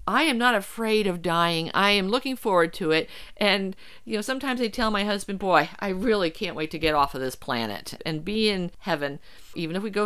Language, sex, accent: English, female, American